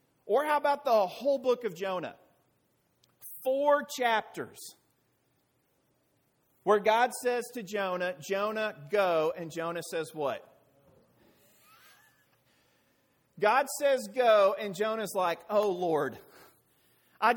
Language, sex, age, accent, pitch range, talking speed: English, male, 40-59, American, 165-240 Hz, 105 wpm